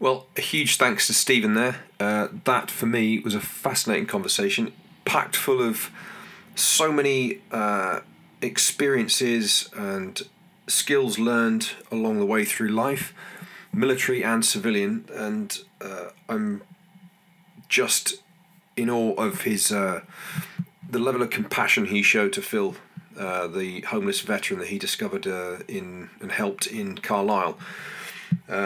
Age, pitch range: 30-49, 125-205 Hz